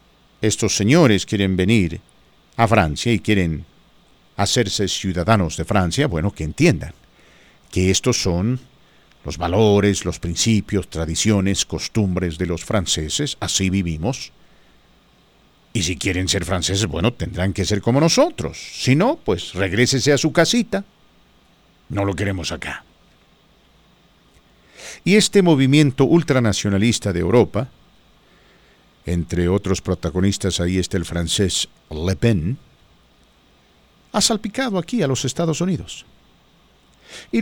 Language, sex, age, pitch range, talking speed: Spanish, male, 50-69, 95-125 Hz, 120 wpm